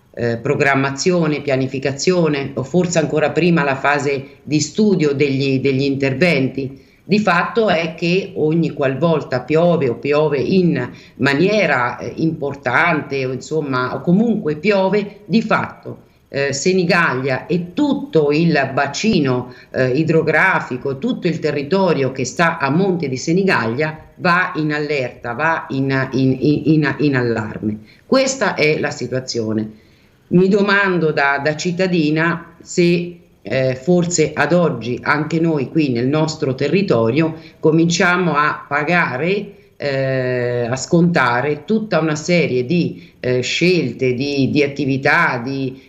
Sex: female